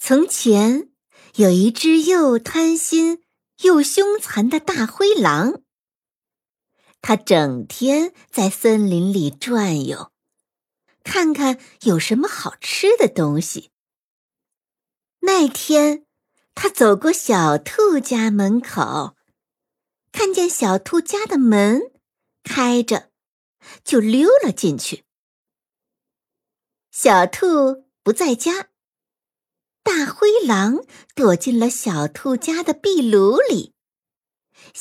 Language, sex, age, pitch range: Chinese, male, 60-79, 215-325 Hz